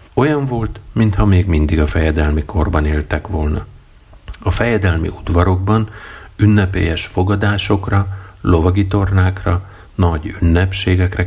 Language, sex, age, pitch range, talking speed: Hungarian, male, 50-69, 80-100 Hz, 100 wpm